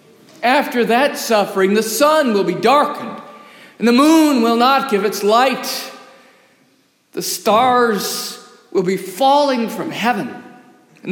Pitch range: 190-250 Hz